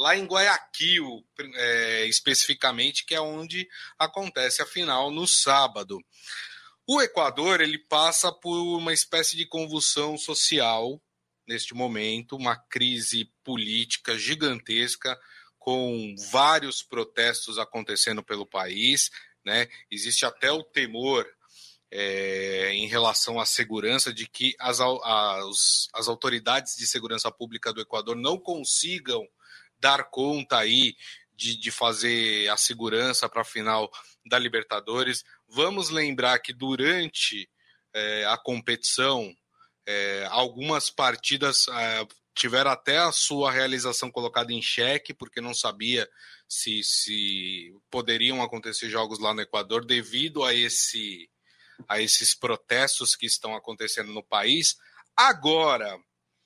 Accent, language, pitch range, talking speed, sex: Brazilian, Portuguese, 110-145 Hz, 115 wpm, male